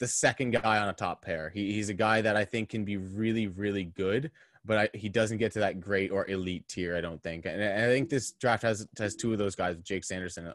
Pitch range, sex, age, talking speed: 95-115 Hz, male, 20-39, 275 wpm